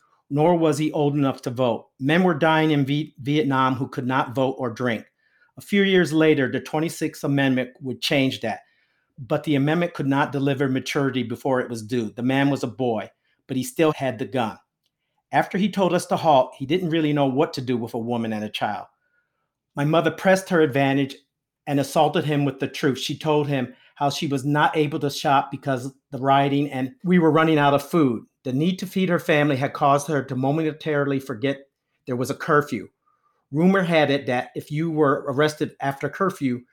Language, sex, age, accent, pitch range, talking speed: English, male, 40-59, American, 130-155 Hz, 205 wpm